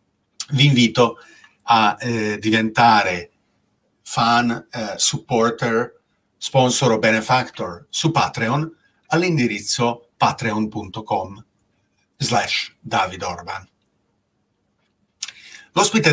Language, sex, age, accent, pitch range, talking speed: Italian, male, 40-59, native, 110-130 Hz, 65 wpm